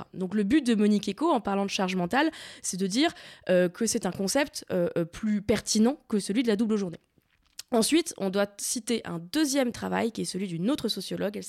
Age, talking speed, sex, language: 20-39, 220 wpm, female, French